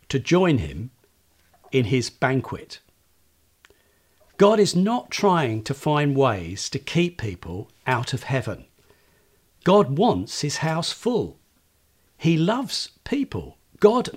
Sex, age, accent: male, 50-69, British